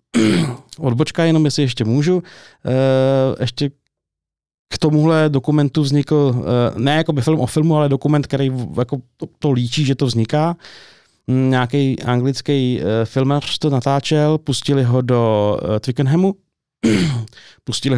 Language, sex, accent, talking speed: Czech, male, native, 110 wpm